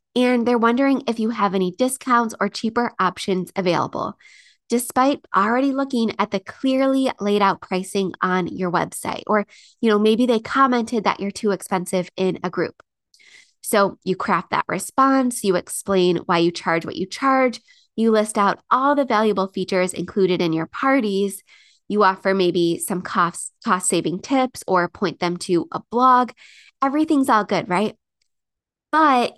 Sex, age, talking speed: female, 20-39, 160 wpm